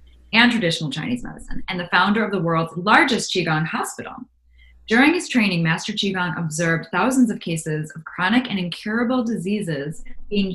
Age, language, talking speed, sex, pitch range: 10-29, English, 160 wpm, female, 170-230 Hz